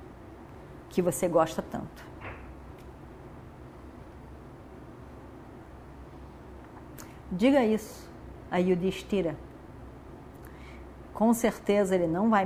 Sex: female